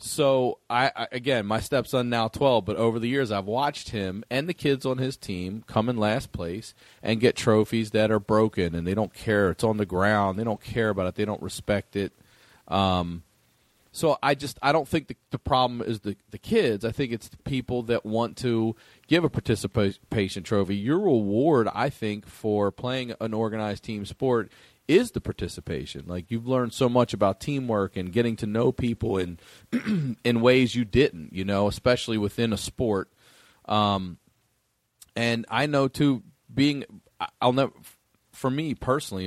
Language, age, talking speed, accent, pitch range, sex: English, 40-59, 190 wpm, American, 100-125 Hz, male